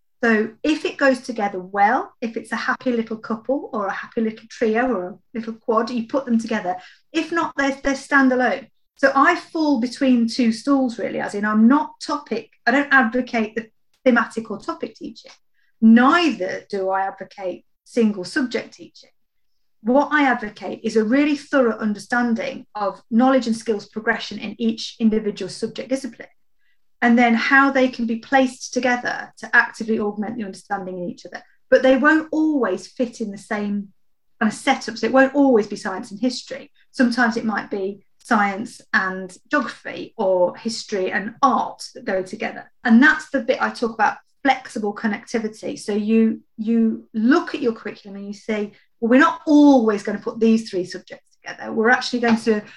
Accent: British